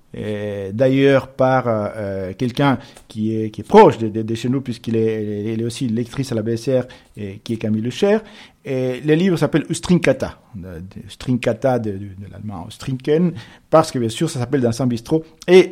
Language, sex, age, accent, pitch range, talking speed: French, male, 50-69, French, 120-170 Hz, 195 wpm